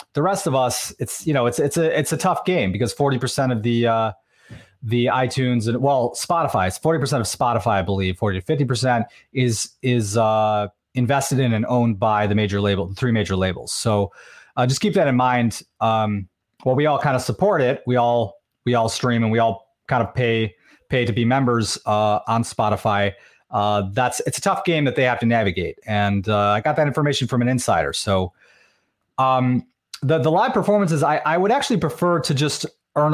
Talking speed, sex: 215 wpm, male